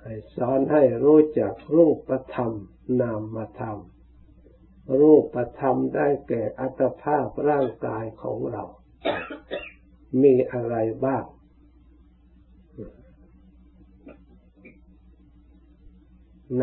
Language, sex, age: Thai, male, 60-79